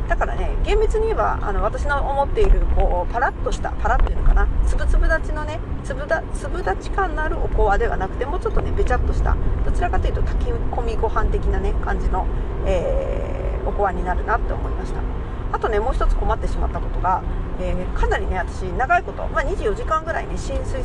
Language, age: Japanese, 40-59